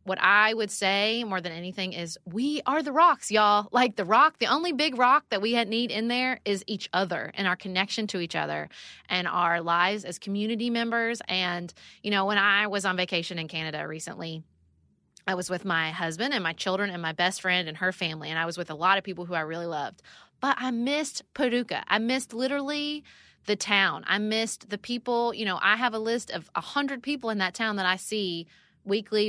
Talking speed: 220 wpm